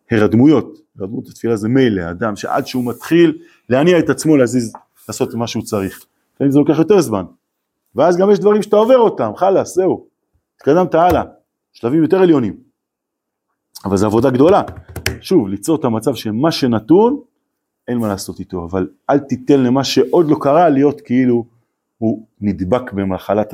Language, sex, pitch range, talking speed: Hebrew, male, 105-150 Hz, 155 wpm